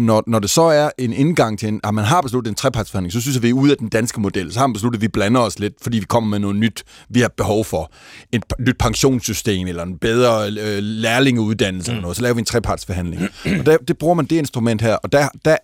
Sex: male